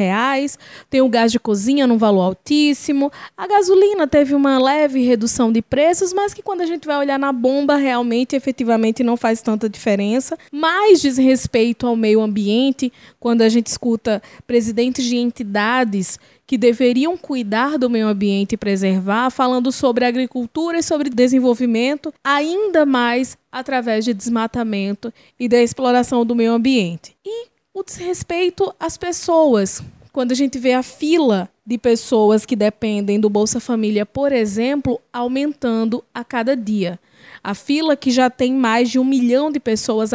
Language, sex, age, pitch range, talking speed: Portuguese, female, 20-39, 225-275 Hz, 155 wpm